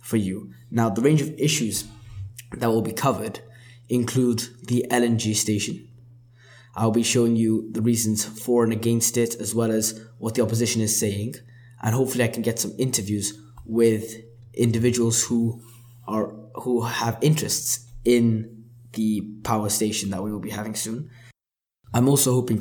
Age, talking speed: 10-29, 155 wpm